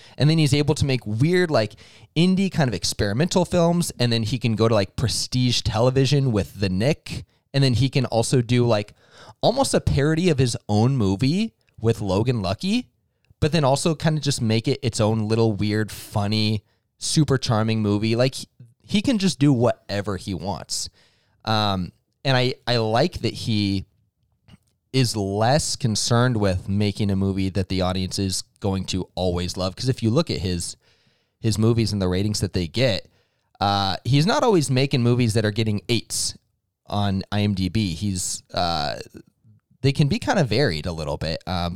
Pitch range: 100-130 Hz